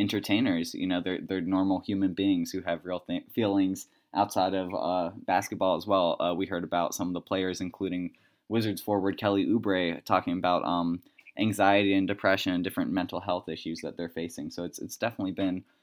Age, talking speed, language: 20-39, 190 wpm, English